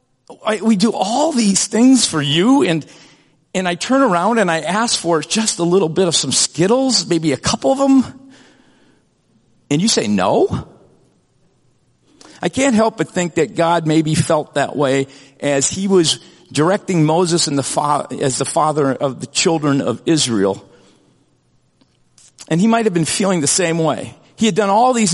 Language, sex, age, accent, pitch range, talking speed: English, male, 50-69, American, 155-205 Hz, 175 wpm